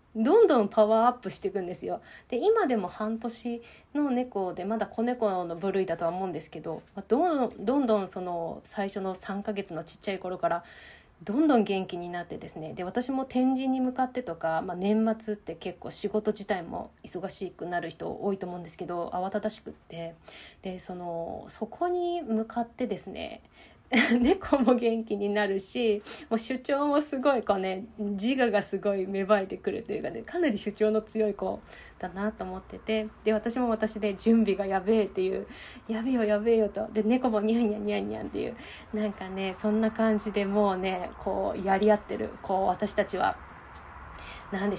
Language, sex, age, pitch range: Japanese, female, 20-39, 195-240 Hz